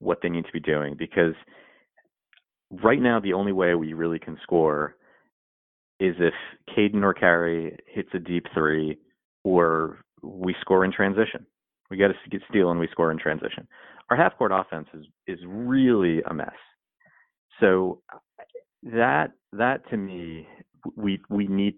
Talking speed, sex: 155 wpm, male